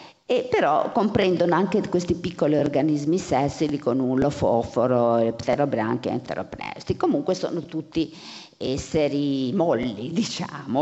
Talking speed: 110 wpm